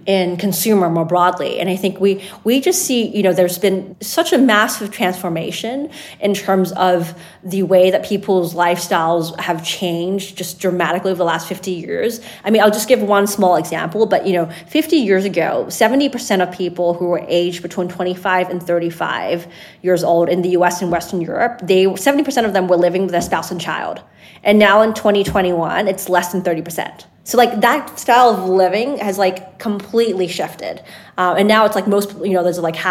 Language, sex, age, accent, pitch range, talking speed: English, female, 20-39, American, 175-205 Hz, 195 wpm